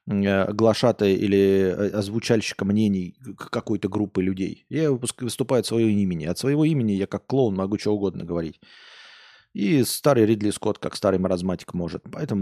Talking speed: 150 wpm